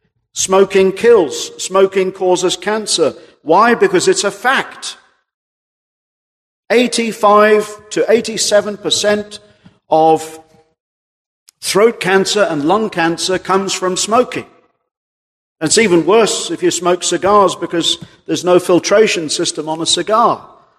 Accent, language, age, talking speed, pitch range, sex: British, English, 50-69, 105 wpm, 165-210 Hz, male